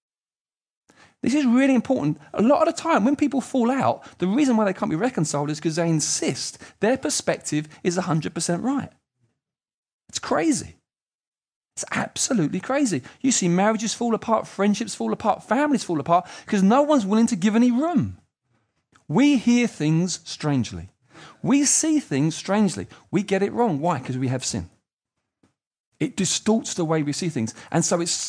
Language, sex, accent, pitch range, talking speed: English, male, British, 150-230 Hz, 170 wpm